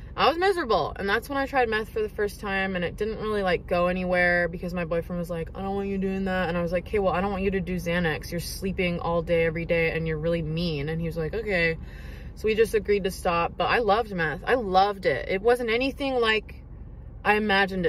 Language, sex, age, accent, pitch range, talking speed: English, female, 20-39, American, 170-205 Hz, 265 wpm